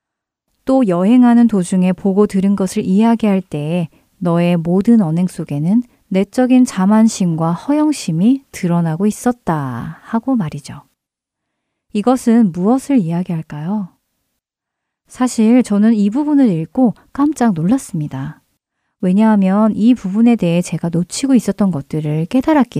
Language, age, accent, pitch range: Korean, 40-59, native, 175-245 Hz